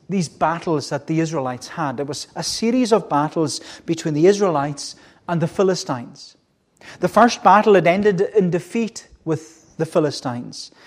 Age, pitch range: 30-49, 140-185 Hz